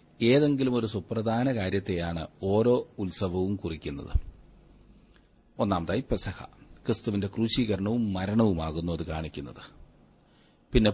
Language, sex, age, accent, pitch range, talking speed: Malayalam, male, 40-59, native, 85-115 Hz, 70 wpm